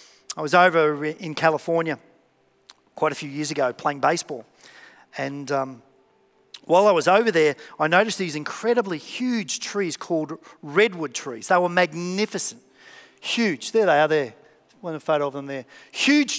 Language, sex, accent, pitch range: English, male, Australian, 155-205 Hz